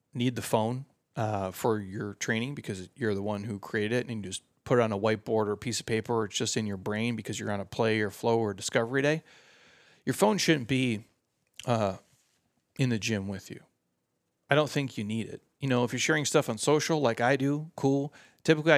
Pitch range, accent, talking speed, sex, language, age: 110-135 Hz, American, 230 wpm, male, English, 30-49